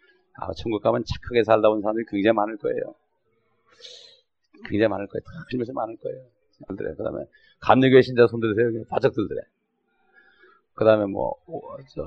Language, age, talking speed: English, 40-59, 140 wpm